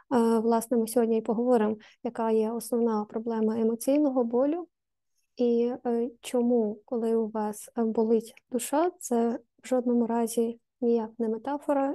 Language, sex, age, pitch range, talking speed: Ukrainian, female, 20-39, 230-255 Hz, 125 wpm